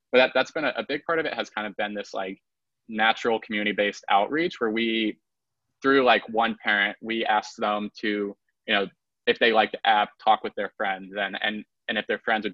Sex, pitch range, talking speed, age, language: male, 100-115 Hz, 230 wpm, 20-39, English